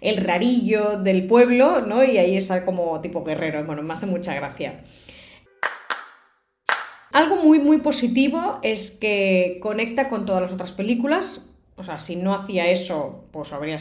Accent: Spanish